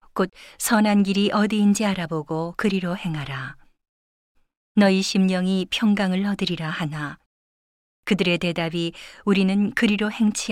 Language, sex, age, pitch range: Korean, female, 40-59, 170-205 Hz